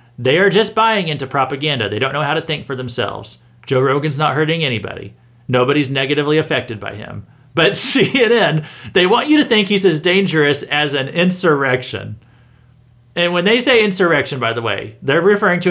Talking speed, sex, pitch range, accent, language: 185 wpm, male, 120-180 Hz, American, English